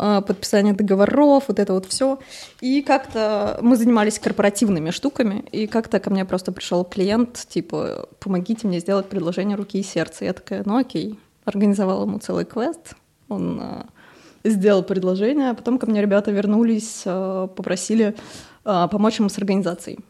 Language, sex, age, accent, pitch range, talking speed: Russian, female, 20-39, native, 195-240 Hz, 155 wpm